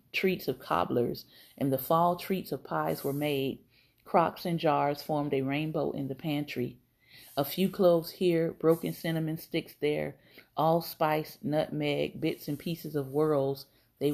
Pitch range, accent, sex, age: 135-170 Hz, American, female, 40-59